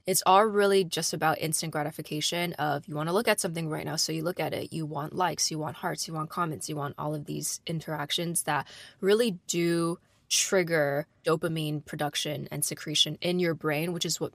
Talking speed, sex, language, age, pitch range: 210 wpm, female, English, 20-39, 155-185 Hz